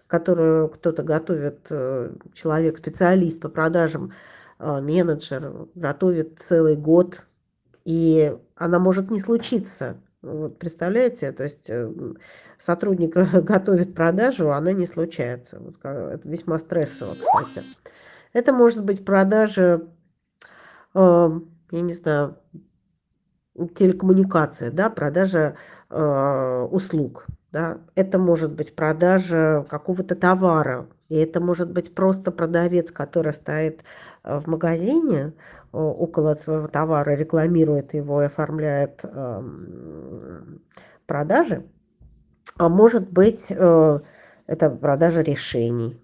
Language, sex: Russian, female